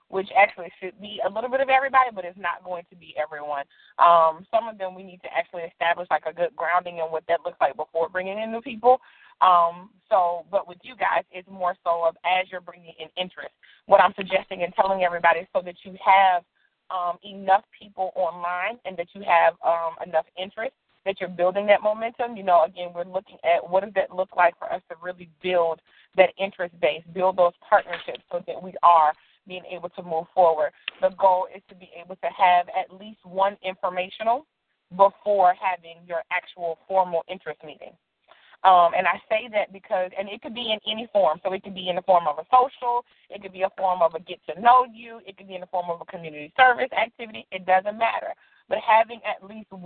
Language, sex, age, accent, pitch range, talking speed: English, female, 30-49, American, 175-205 Hz, 220 wpm